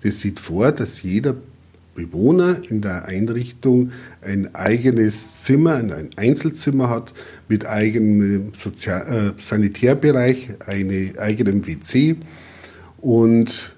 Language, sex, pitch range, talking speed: German, male, 100-130 Hz, 105 wpm